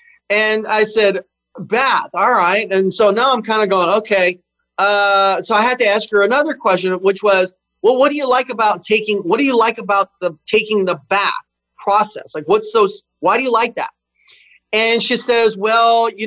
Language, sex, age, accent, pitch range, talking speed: English, male, 30-49, American, 185-230 Hz, 205 wpm